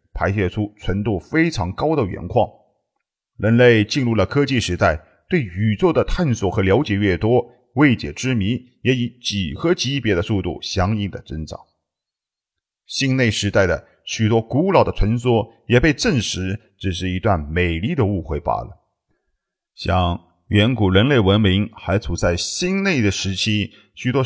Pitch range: 95-125 Hz